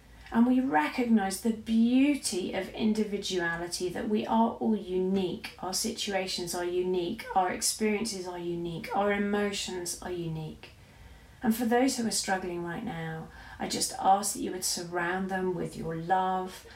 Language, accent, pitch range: English, British, 180-225 Hz